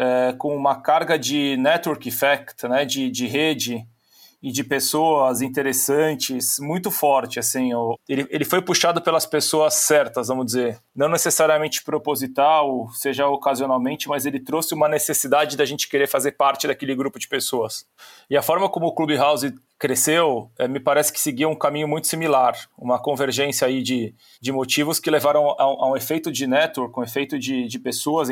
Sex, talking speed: male, 175 wpm